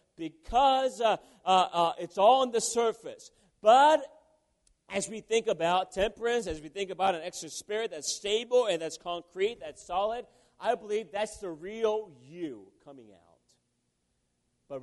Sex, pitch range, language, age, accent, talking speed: male, 160-220 Hz, English, 40-59, American, 155 wpm